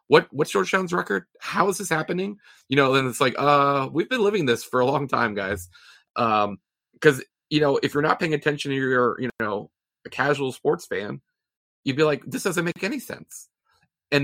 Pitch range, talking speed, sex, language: 115-145 Hz, 205 wpm, male, English